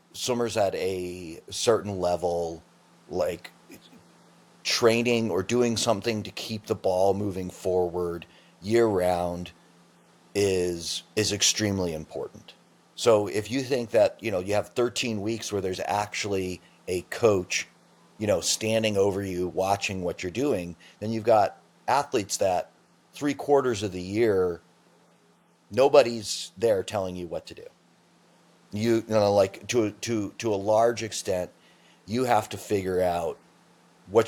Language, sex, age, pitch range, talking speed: English, male, 30-49, 90-110 Hz, 140 wpm